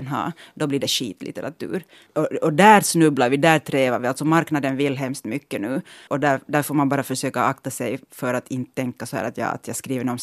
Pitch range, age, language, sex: 135-165 Hz, 30-49, Finnish, female